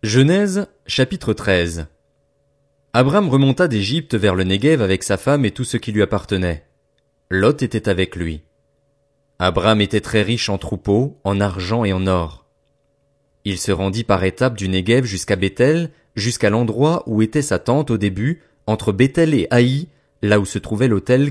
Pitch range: 95-130 Hz